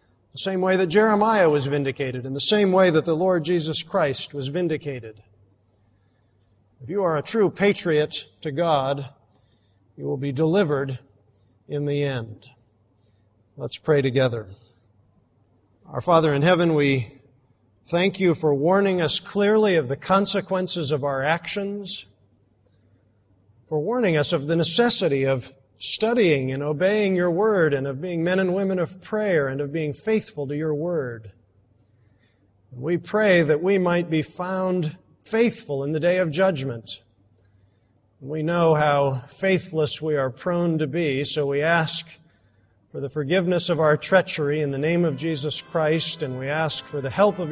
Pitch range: 115-175 Hz